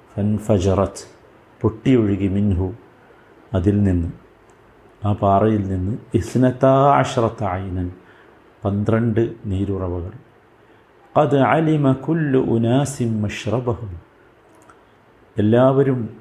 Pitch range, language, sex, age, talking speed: 100-120 Hz, Malayalam, male, 50-69, 70 wpm